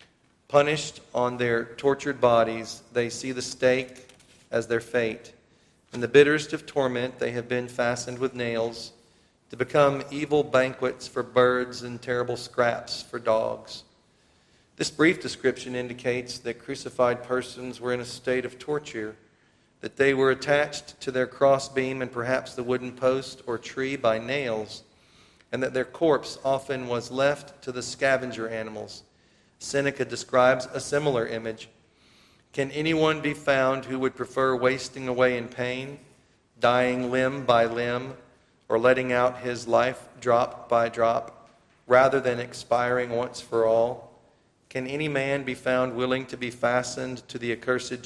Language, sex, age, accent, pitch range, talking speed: English, male, 40-59, American, 120-130 Hz, 150 wpm